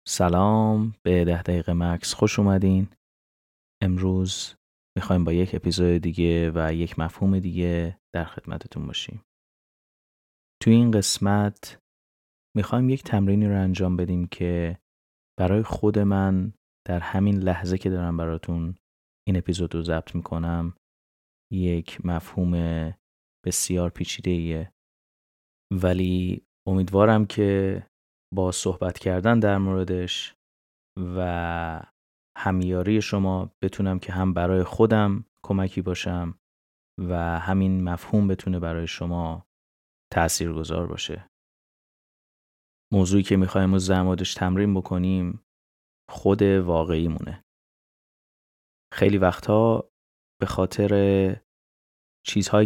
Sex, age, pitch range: male, 30-49, 85-95 Hz